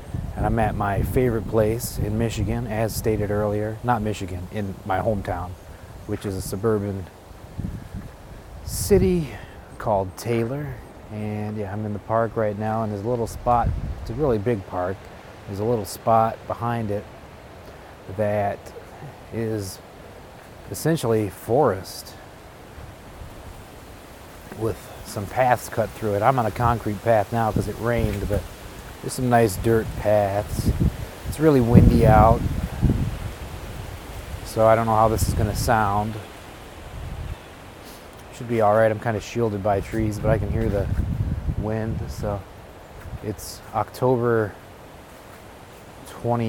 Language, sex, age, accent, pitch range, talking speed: English, male, 30-49, American, 95-115 Hz, 135 wpm